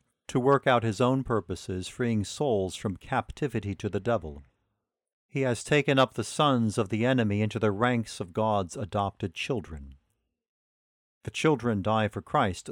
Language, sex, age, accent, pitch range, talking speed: English, male, 50-69, American, 105-130 Hz, 160 wpm